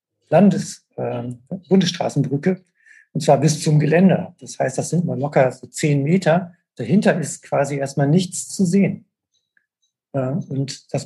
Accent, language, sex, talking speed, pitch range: German, German, male, 145 wpm, 125-160 Hz